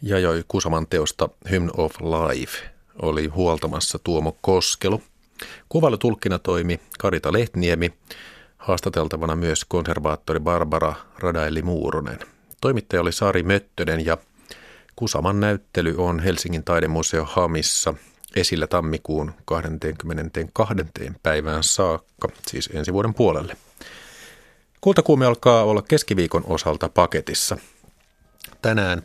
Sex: male